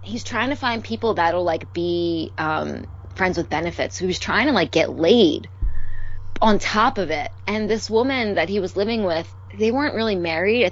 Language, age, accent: English, 20-39, American